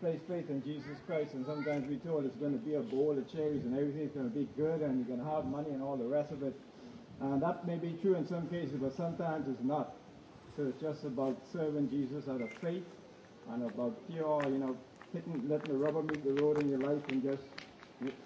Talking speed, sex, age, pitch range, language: 240 wpm, male, 50-69, 135-160 Hz, English